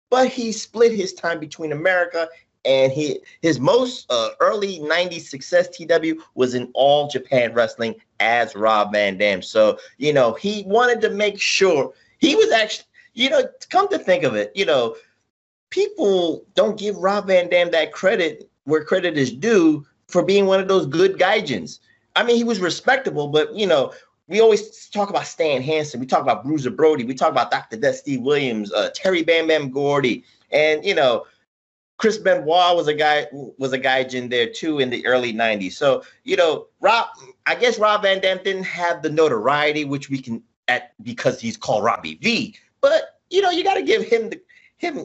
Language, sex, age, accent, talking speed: English, male, 30-49, American, 190 wpm